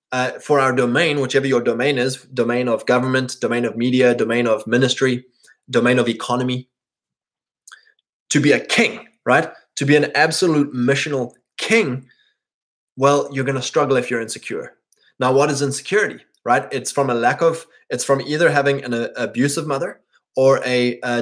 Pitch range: 120-145 Hz